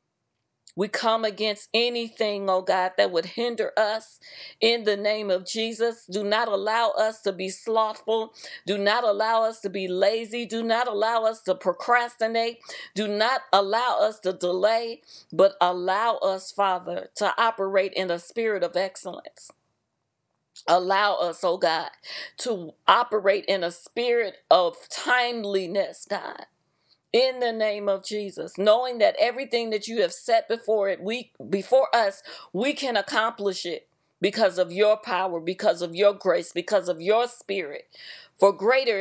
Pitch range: 185-225 Hz